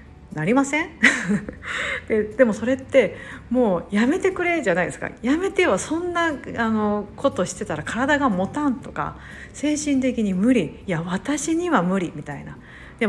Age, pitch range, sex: 50-69, 185-265 Hz, female